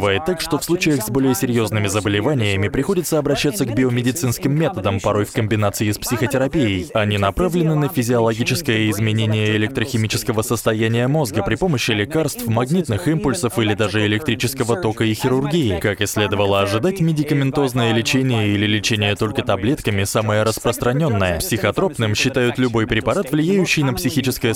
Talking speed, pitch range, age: 135 wpm, 110-145 Hz, 20-39